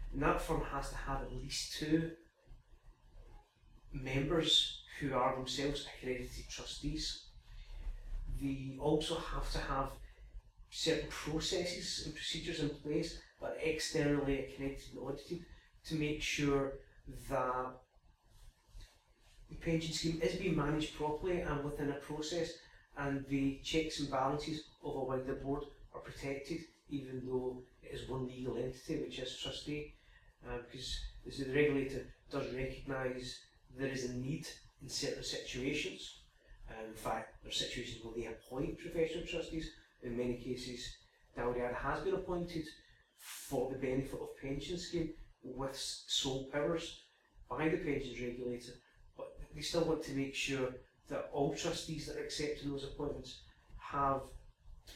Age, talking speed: 40-59, 140 wpm